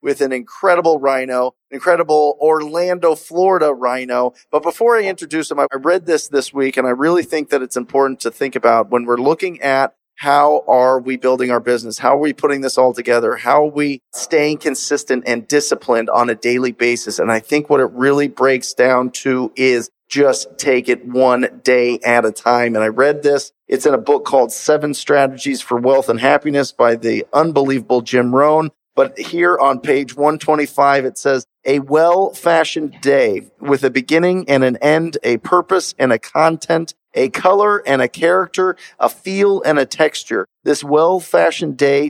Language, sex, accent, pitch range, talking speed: English, male, American, 130-165 Hz, 185 wpm